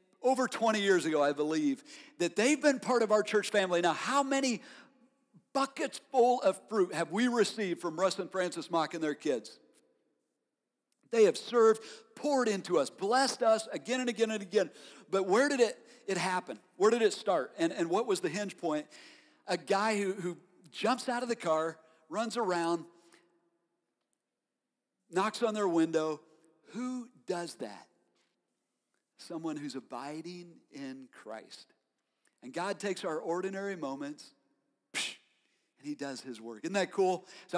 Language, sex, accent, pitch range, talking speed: English, male, American, 160-230 Hz, 160 wpm